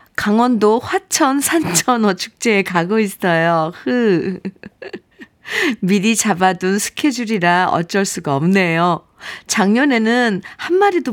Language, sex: Korean, female